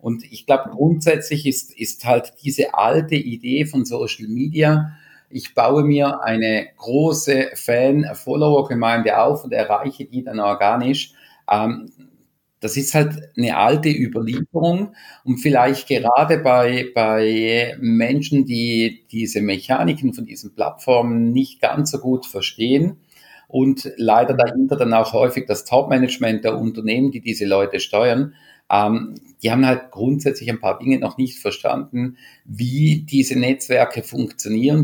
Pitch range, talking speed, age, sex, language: 110-140 Hz, 135 wpm, 50-69, male, German